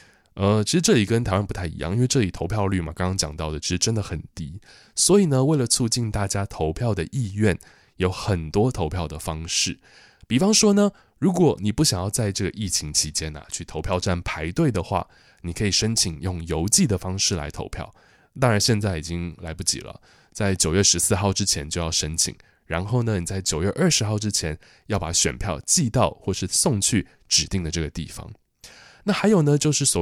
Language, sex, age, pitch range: Chinese, male, 20-39, 85-110 Hz